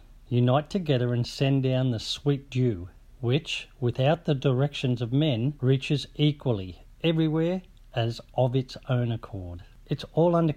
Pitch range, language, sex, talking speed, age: 120-145 Hz, English, male, 140 wpm, 50-69